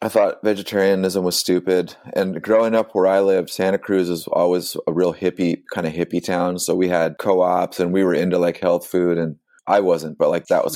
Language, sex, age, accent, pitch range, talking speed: English, male, 30-49, American, 80-90 Hz, 225 wpm